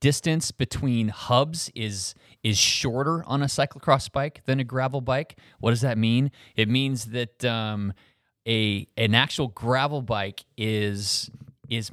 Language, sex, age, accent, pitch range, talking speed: English, male, 30-49, American, 100-130 Hz, 145 wpm